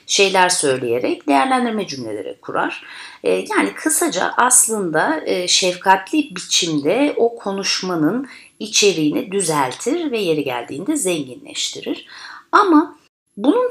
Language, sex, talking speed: Turkish, female, 90 wpm